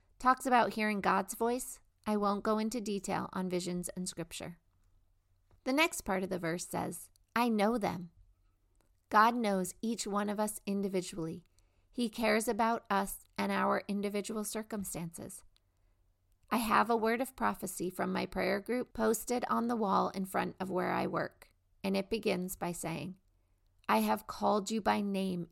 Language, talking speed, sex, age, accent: English, 165 wpm, female, 40-59, American